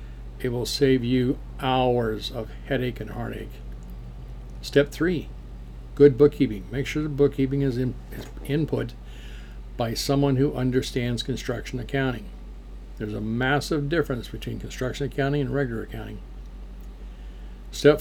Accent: American